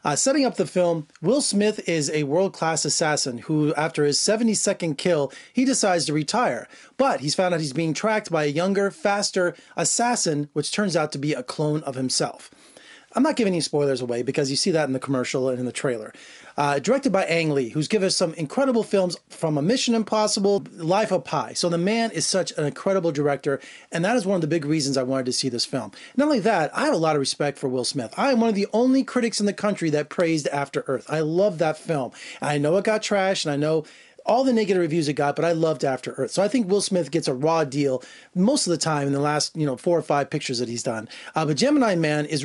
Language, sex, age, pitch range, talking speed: English, male, 30-49, 150-205 Hz, 250 wpm